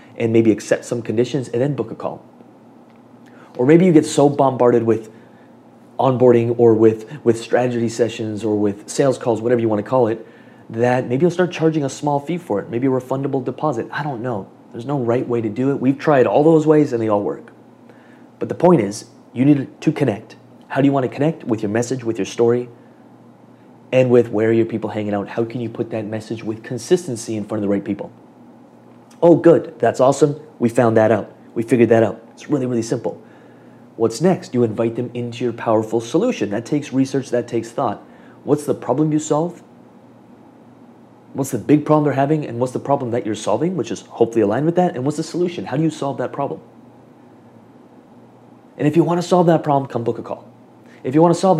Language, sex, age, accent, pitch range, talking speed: English, male, 30-49, American, 115-145 Hz, 215 wpm